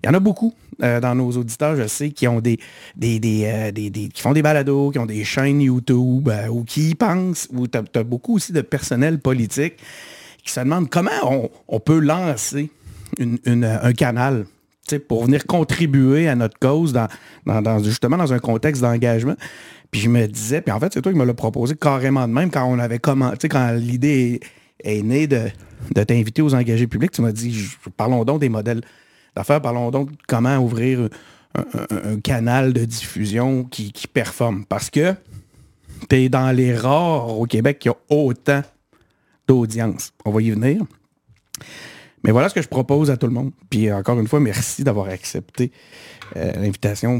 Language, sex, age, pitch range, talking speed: French, male, 50-69, 115-140 Hz, 200 wpm